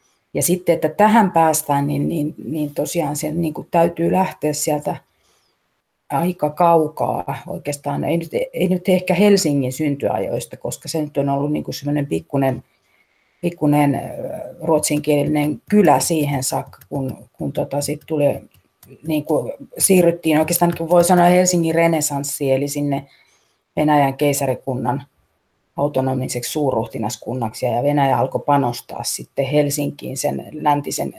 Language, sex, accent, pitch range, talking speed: Finnish, female, native, 140-160 Hz, 125 wpm